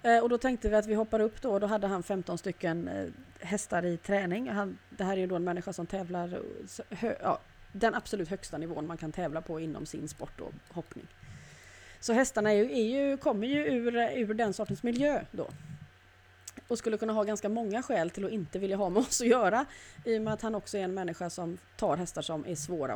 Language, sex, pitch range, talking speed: Swedish, female, 175-230 Hz, 220 wpm